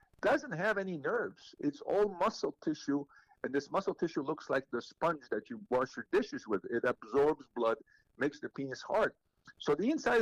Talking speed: 190 wpm